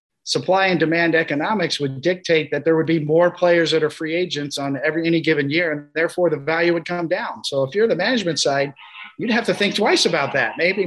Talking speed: 230 wpm